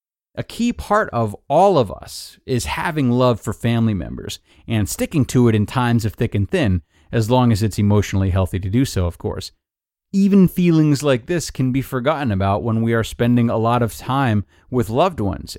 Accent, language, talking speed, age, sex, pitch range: American, English, 205 wpm, 30-49, male, 105-135 Hz